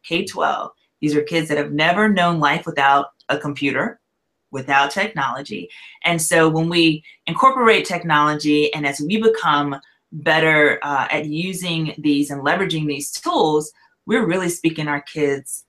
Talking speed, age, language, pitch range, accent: 145 wpm, 30-49, English, 145-175 Hz, American